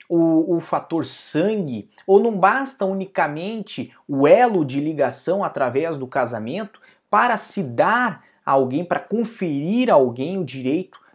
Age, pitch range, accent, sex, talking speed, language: 20-39, 140-195 Hz, Brazilian, male, 140 wpm, Portuguese